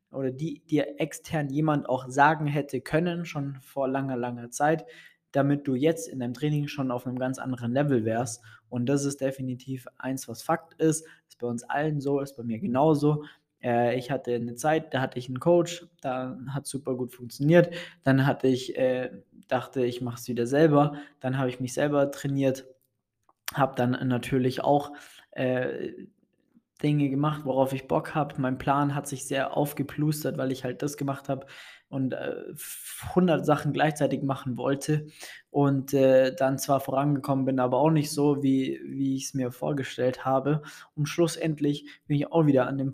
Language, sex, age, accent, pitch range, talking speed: German, male, 20-39, German, 130-145 Hz, 180 wpm